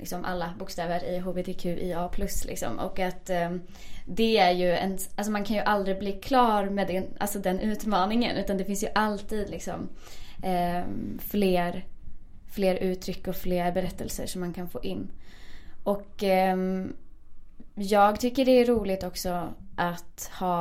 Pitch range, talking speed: 175-200 Hz, 135 wpm